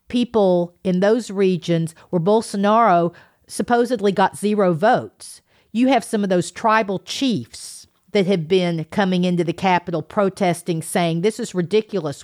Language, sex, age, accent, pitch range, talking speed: English, female, 50-69, American, 165-215 Hz, 140 wpm